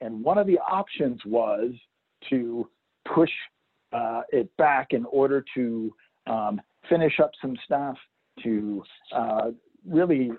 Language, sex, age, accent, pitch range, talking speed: English, male, 50-69, American, 125-195 Hz, 125 wpm